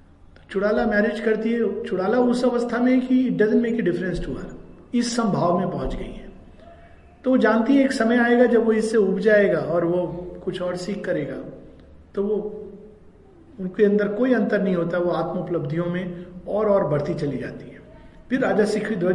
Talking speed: 180 wpm